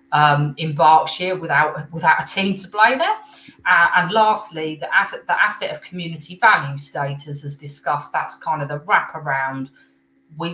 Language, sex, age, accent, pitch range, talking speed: English, female, 30-49, British, 140-160 Hz, 170 wpm